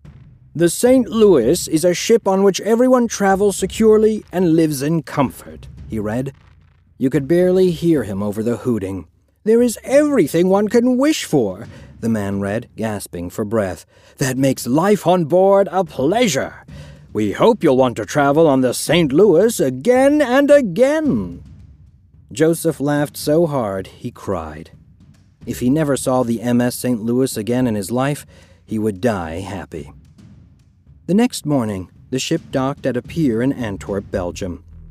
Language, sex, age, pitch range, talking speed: English, male, 40-59, 100-160 Hz, 160 wpm